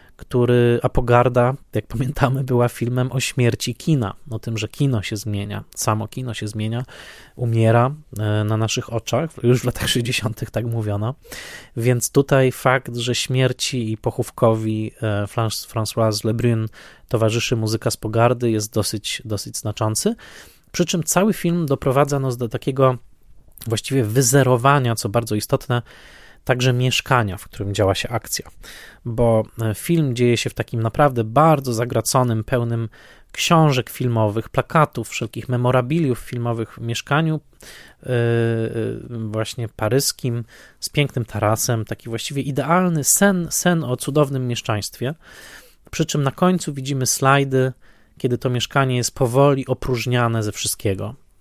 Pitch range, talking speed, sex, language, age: 110-135 Hz, 130 wpm, male, Polish, 20-39